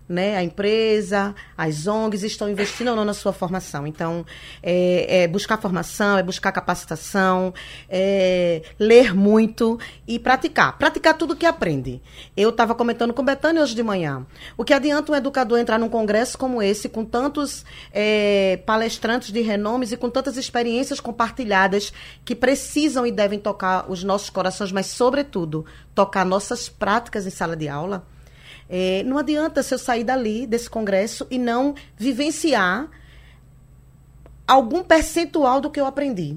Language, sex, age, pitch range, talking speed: Portuguese, female, 20-39, 190-255 Hz, 150 wpm